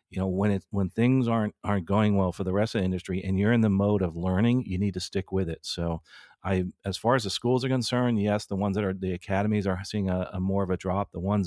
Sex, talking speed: male, 285 wpm